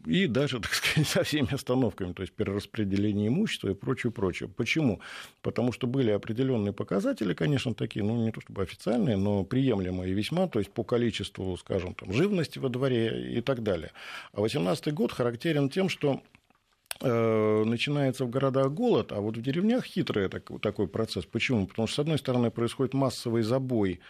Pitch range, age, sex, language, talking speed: 100-135 Hz, 50-69, male, Russian, 165 wpm